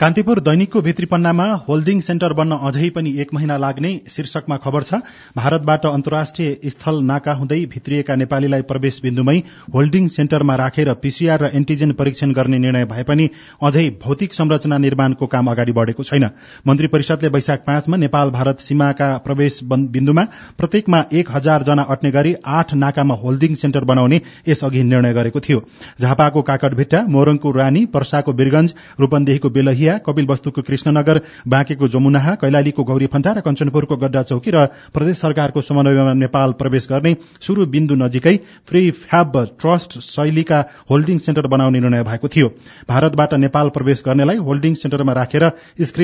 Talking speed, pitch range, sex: 110 wpm, 135-155 Hz, male